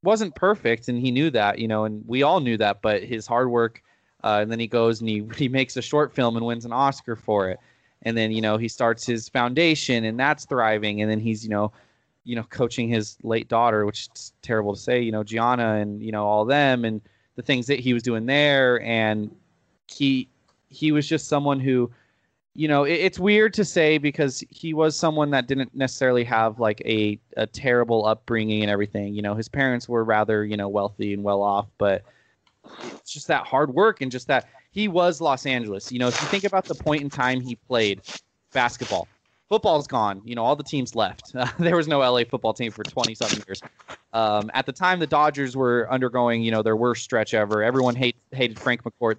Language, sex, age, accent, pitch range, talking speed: English, male, 20-39, American, 110-135 Hz, 225 wpm